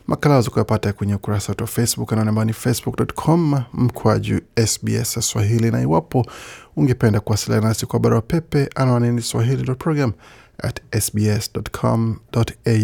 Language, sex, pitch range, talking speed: Swahili, male, 110-135 Hz, 110 wpm